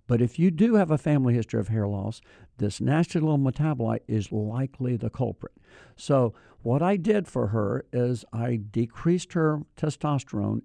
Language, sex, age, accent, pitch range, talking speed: English, male, 60-79, American, 115-150 Hz, 170 wpm